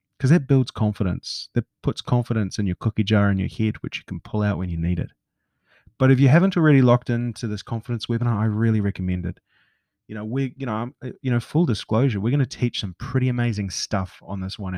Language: English